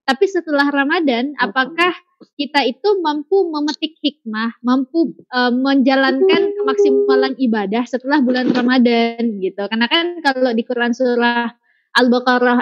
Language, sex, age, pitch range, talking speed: Indonesian, female, 20-39, 235-285 Hz, 120 wpm